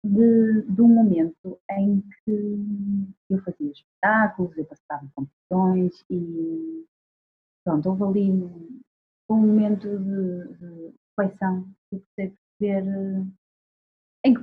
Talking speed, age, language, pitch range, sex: 105 wpm, 30-49, Portuguese, 180-215 Hz, female